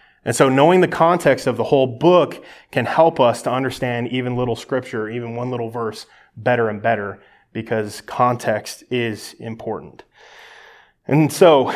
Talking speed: 155 wpm